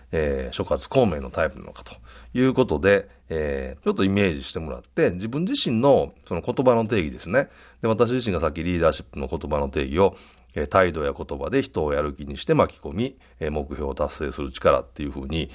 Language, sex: Japanese, male